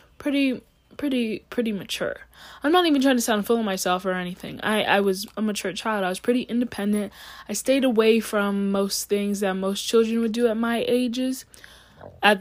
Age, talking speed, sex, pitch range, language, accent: 10-29, 195 wpm, female, 210-250 Hz, English, American